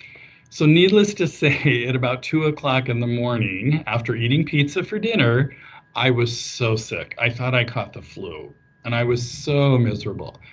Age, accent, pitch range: 40-59, American, 115-145 Hz